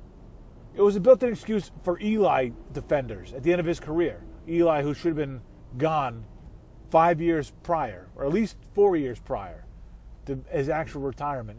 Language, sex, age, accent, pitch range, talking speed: English, male, 30-49, American, 105-165 Hz, 170 wpm